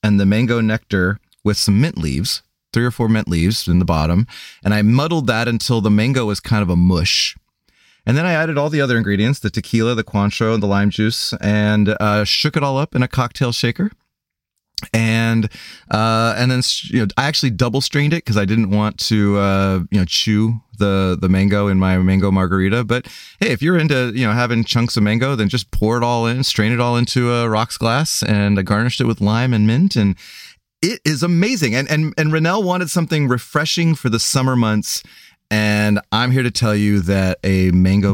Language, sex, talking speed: English, male, 215 wpm